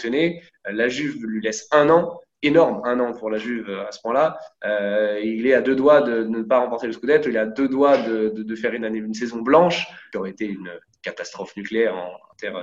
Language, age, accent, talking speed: French, 20-39, French, 235 wpm